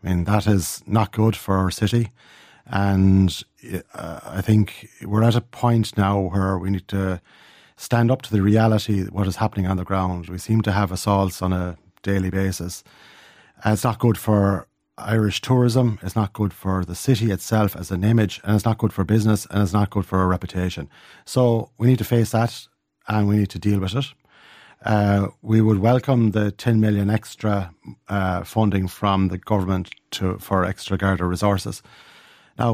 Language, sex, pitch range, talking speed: English, male, 95-110 Hz, 190 wpm